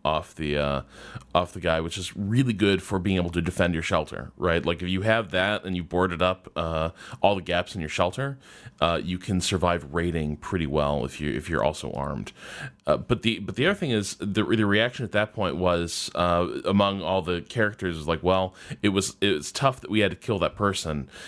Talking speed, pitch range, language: 230 wpm, 80-100 Hz, English